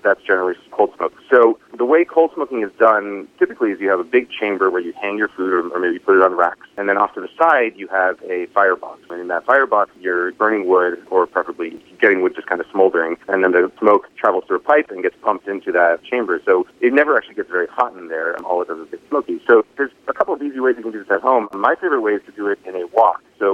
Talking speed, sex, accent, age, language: 275 wpm, male, American, 30-49, English